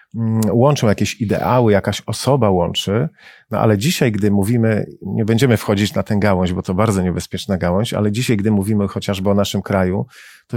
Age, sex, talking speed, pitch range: 40-59, male, 175 wpm, 105-125 Hz